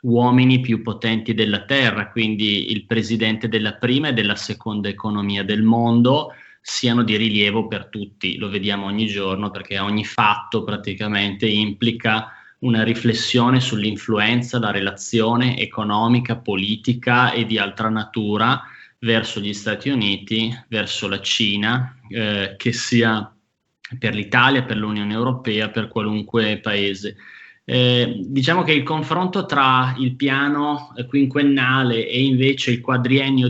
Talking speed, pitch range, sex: 130 wpm, 110-125 Hz, male